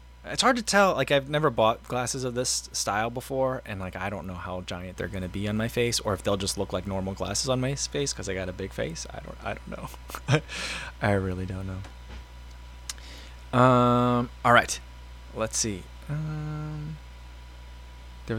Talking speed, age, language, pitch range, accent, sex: 195 wpm, 20-39, English, 90-135 Hz, American, male